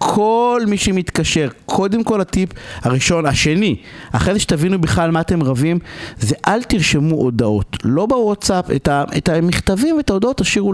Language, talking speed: Hebrew, 145 wpm